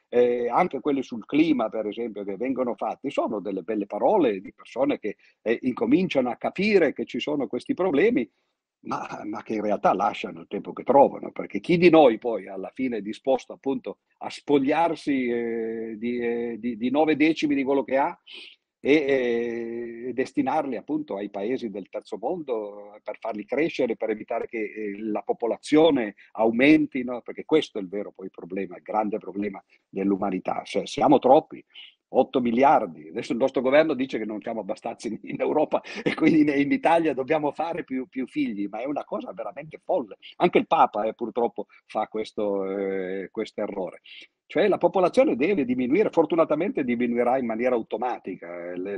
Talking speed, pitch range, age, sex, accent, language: 175 wpm, 110-155 Hz, 50-69, male, native, Italian